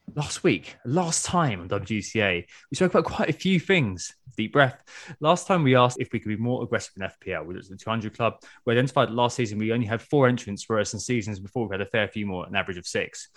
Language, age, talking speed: English, 20-39, 260 wpm